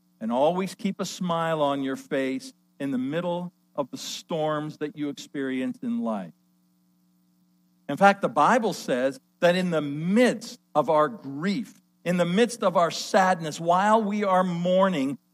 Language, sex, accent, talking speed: English, male, American, 160 wpm